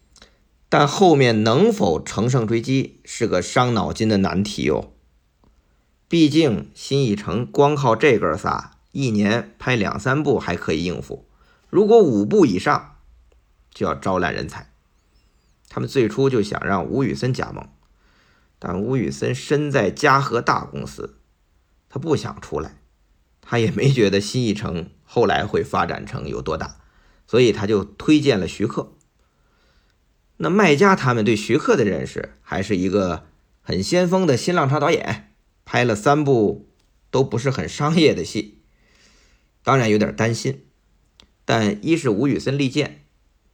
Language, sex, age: Chinese, male, 50-69